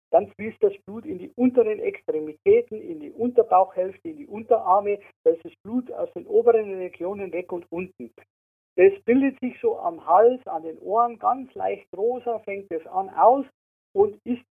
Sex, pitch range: male, 170-270 Hz